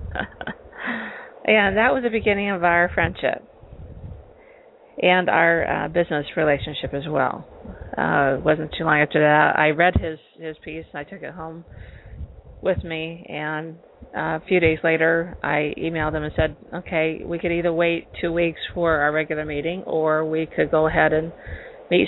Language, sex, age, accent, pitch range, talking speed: English, female, 40-59, American, 155-180 Hz, 170 wpm